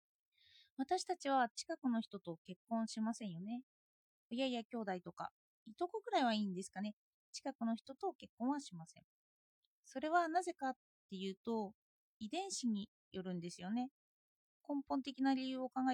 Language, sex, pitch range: Japanese, female, 210-295 Hz